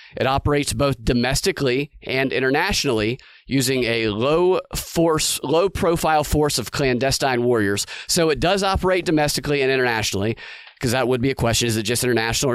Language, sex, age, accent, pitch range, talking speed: English, male, 30-49, American, 125-160 Hz, 160 wpm